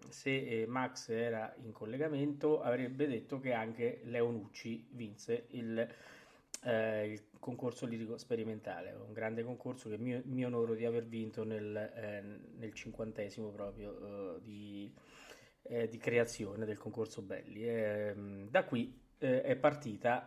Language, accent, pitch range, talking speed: Italian, native, 115-145 Hz, 135 wpm